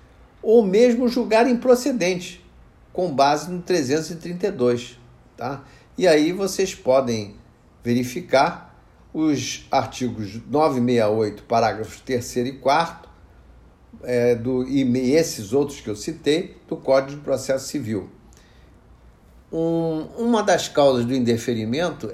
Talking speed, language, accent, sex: 110 wpm, Portuguese, Brazilian, male